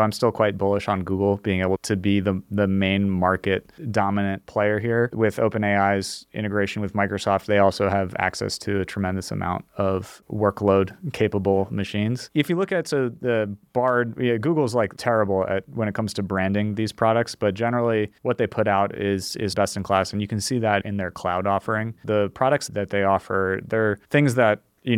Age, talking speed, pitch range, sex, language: 30-49, 200 wpm, 95-115 Hz, male, English